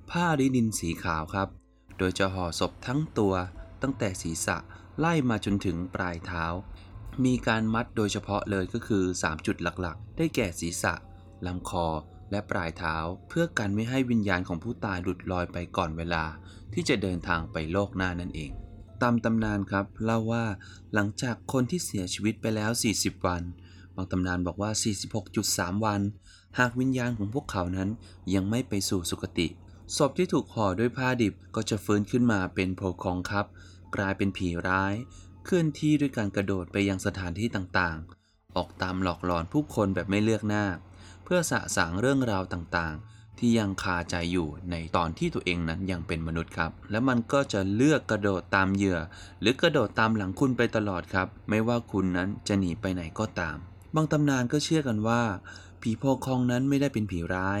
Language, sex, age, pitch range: Thai, male, 20-39, 90-115 Hz